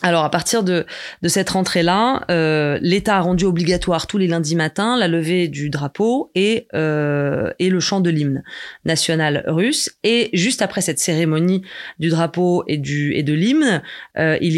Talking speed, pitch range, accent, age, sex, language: 175 wpm, 160-200 Hz, French, 20-39, female, French